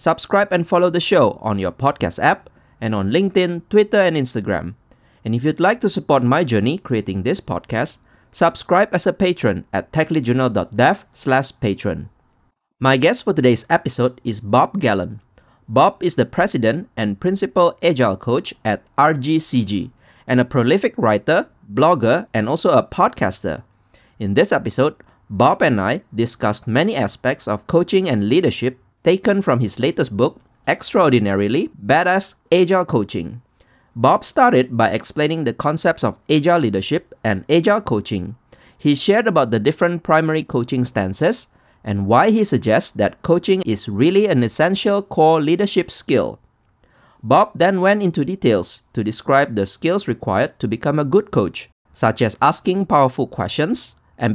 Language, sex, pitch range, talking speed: English, male, 110-175 Hz, 150 wpm